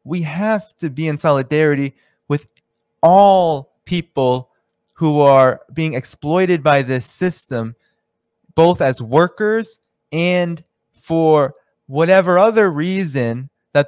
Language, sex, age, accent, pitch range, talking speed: English, male, 20-39, American, 135-185 Hz, 110 wpm